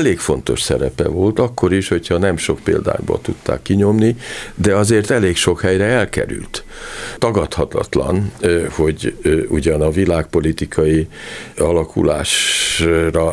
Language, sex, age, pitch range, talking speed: Hungarian, male, 50-69, 80-100 Hz, 110 wpm